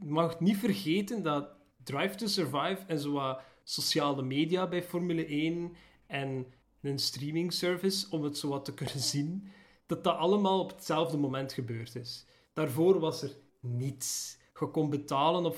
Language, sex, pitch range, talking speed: Dutch, male, 135-175 Hz, 160 wpm